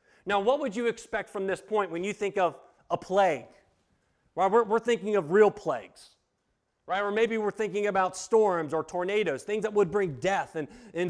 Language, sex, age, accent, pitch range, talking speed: English, male, 40-59, American, 185-230 Hz, 195 wpm